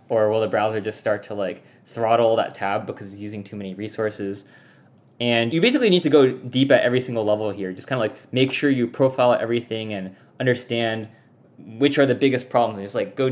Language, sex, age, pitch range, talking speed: English, male, 20-39, 105-130 Hz, 220 wpm